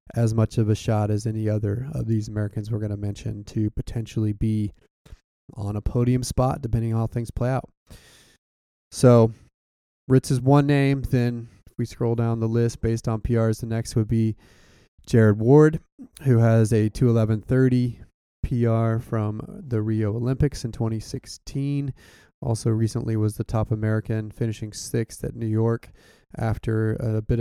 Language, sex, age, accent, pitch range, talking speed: English, male, 20-39, American, 110-120 Hz, 160 wpm